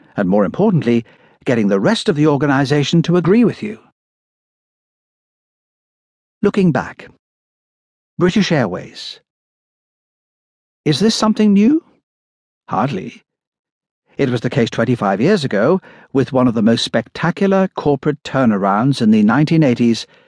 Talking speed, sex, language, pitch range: 120 wpm, male, English, 120-185 Hz